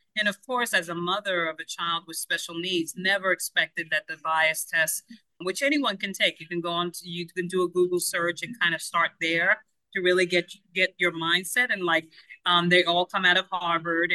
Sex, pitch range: female, 170-195 Hz